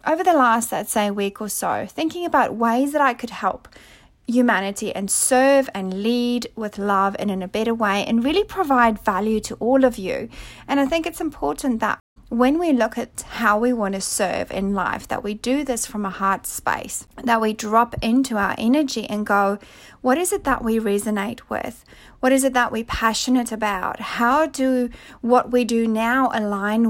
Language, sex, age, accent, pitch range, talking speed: English, female, 40-59, Australian, 210-260 Hz, 200 wpm